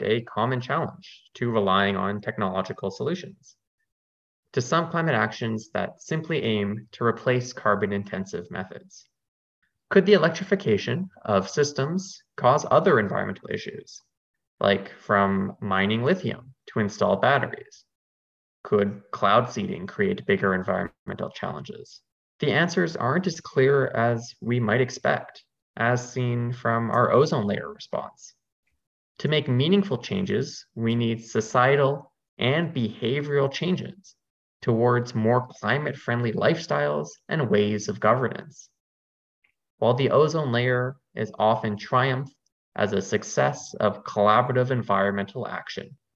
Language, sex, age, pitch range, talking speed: English, male, 20-39, 105-150 Hz, 120 wpm